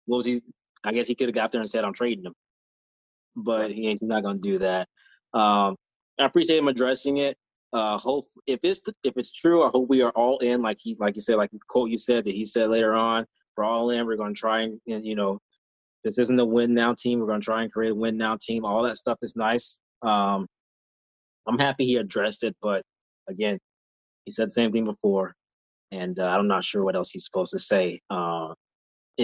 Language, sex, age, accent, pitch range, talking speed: English, male, 20-39, American, 105-125 Hz, 235 wpm